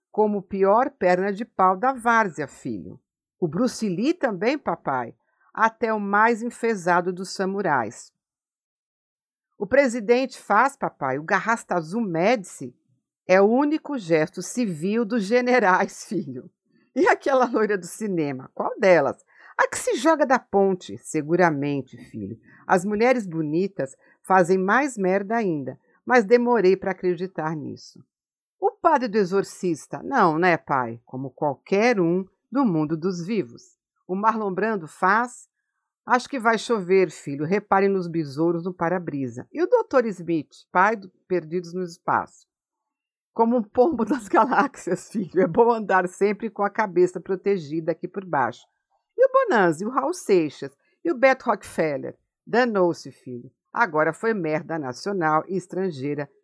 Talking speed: 140 wpm